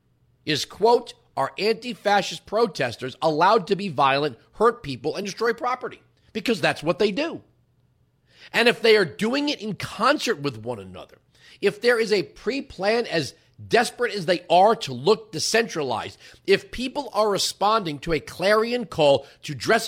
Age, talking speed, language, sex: 40-59, 160 wpm, English, male